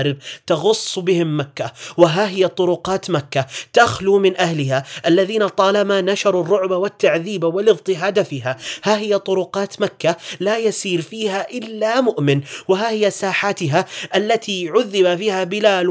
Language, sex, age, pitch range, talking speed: Arabic, male, 30-49, 160-205 Hz, 125 wpm